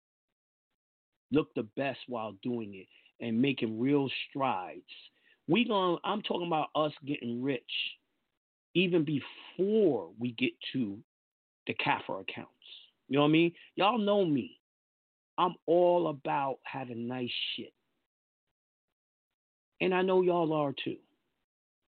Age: 40-59